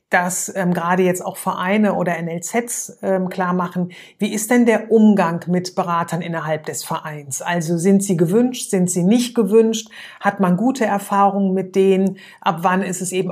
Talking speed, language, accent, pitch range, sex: 180 wpm, German, German, 175-200 Hz, female